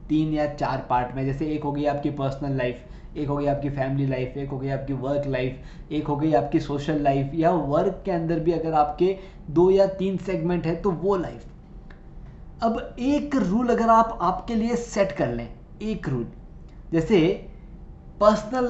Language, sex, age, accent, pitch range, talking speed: Hindi, male, 20-39, native, 160-215 Hz, 190 wpm